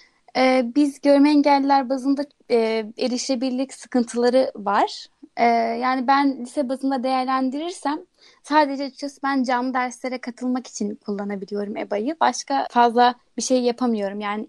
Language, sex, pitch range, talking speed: Turkish, female, 230-275 Hz, 110 wpm